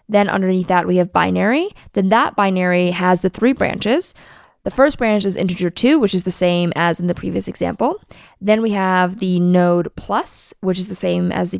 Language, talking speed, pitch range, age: English, 205 wpm, 180-210 Hz, 20-39